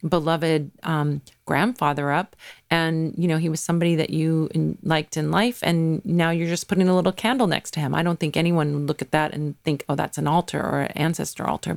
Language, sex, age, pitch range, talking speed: English, female, 40-59, 155-195 Hz, 225 wpm